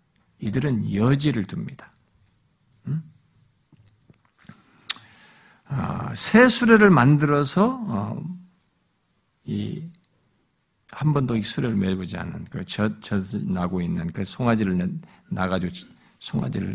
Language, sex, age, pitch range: Korean, male, 50-69, 110-170 Hz